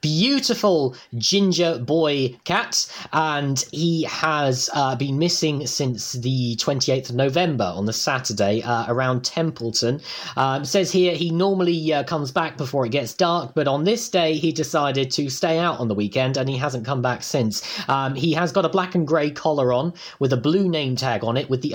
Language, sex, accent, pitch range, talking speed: English, male, British, 120-160 Hz, 195 wpm